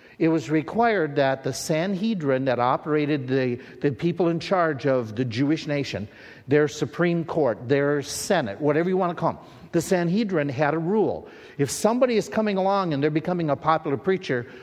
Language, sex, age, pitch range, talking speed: English, male, 50-69, 140-180 Hz, 180 wpm